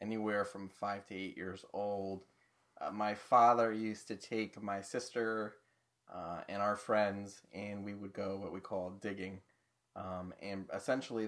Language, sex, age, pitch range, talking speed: English, male, 20-39, 100-110 Hz, 160 wpm